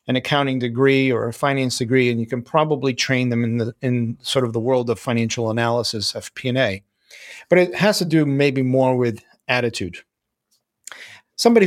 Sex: male